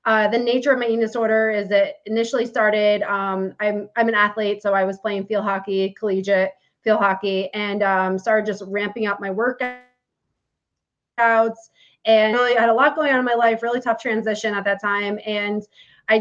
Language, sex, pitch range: English, female, 190-220 Hz